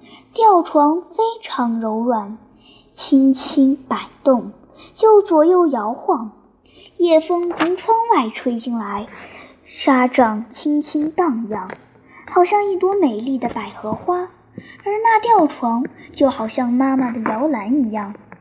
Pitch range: 240-355 Hz